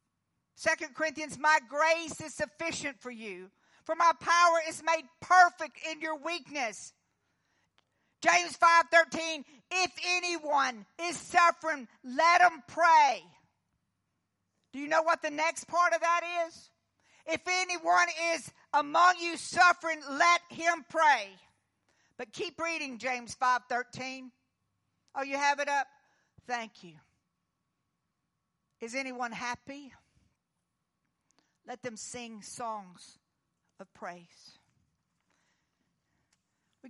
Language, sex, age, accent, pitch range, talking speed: English, female, 50-69, American, 250-335 Hz, 110 wpm